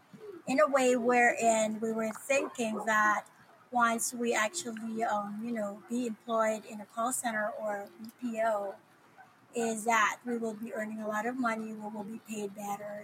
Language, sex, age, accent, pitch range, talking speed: English, female, 30-49, American, 215-245 Hz, 170 wpm